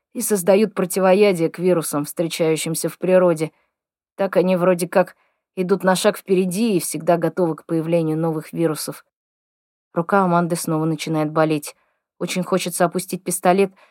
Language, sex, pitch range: Russian, female, 175-205 Hz